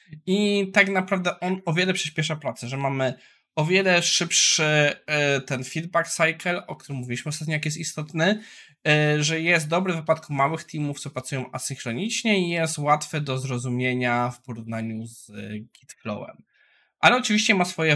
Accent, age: native, 20-39